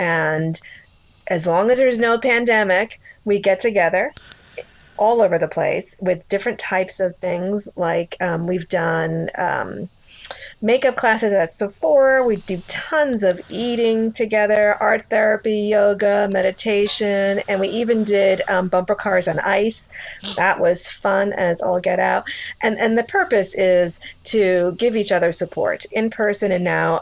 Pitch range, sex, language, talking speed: 175-210 Hz, female, English, 150 wpm